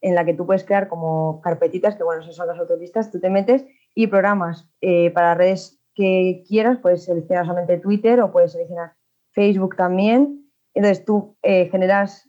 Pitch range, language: 170-205 Hz, Spanish